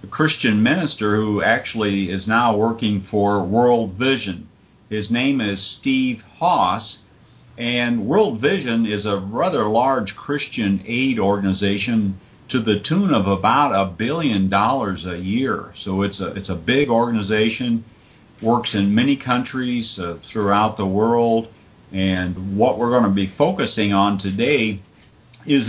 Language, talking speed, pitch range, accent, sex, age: English, 140 wpm, 100-125 Hz, American, male, 50-69